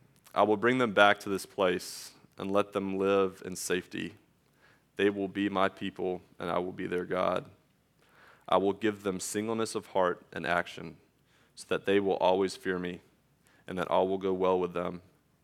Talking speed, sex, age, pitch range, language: 190 wpm, male, 20-39, 90-100 Hz, English